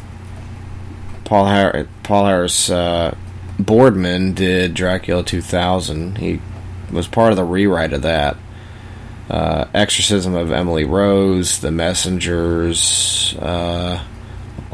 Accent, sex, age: American, male, 20-39